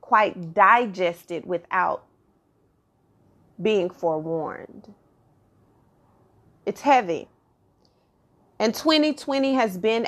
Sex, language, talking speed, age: female, English, 65 wpm, 30-49